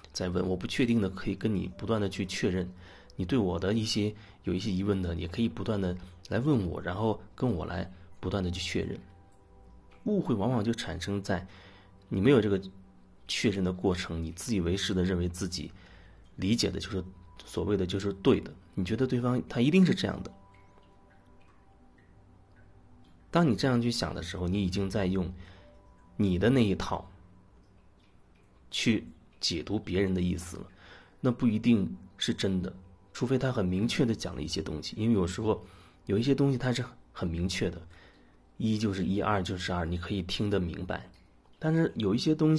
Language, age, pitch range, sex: Chinese, 30-49, 90-110 Hz, male